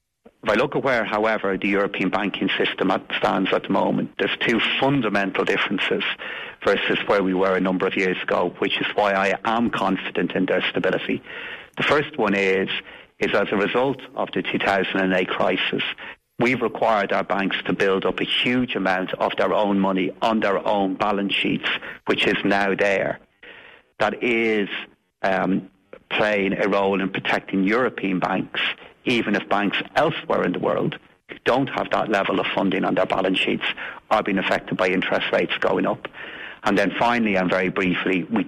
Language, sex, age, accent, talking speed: English, male, 40-59, British, 175 wpm